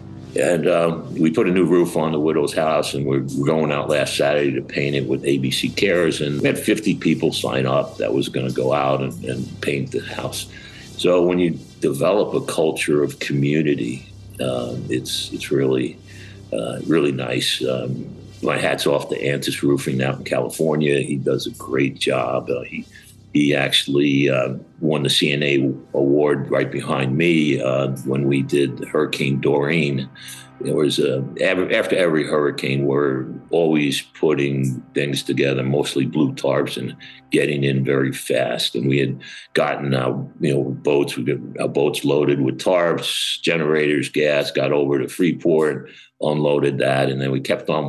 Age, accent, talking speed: 60-79, American, 170 wpm